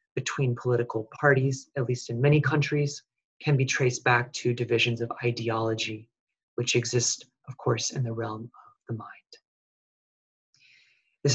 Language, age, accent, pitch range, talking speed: English, 30-49, American, 115-135 Hz, 145 wpm